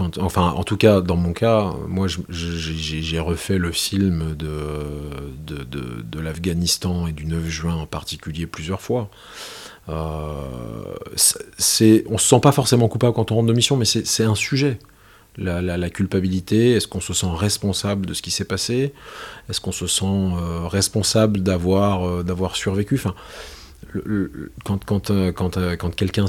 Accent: French